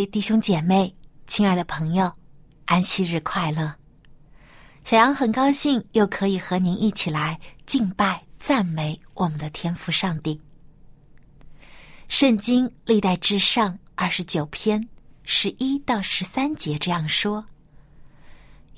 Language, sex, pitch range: Chinese, female, 155-235 Hz